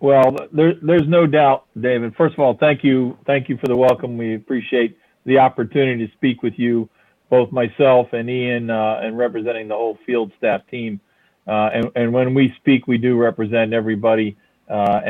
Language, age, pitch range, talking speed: English, 40-59, 115-140 Hz, 185 wpm